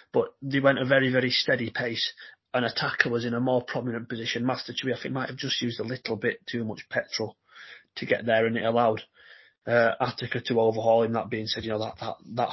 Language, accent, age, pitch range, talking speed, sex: English, British, 30-49, 115-130 Hz, 235 wpm, male